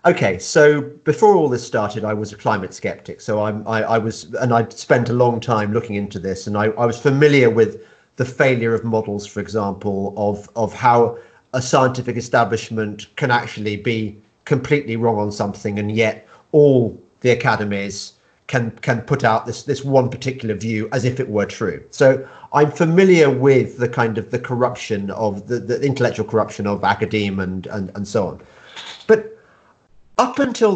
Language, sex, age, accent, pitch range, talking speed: English, male, 40-59, British, 105-145 Hz, 180 wpm